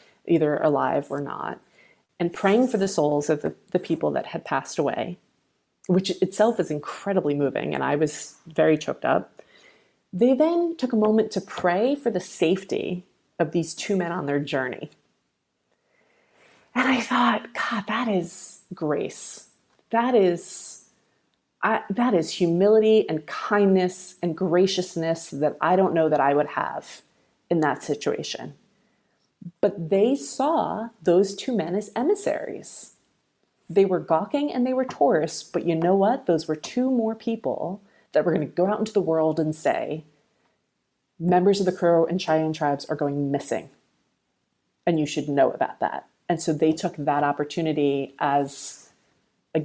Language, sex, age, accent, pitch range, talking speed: English, female, 30-49, American, 150-200 Hz, 160 wpm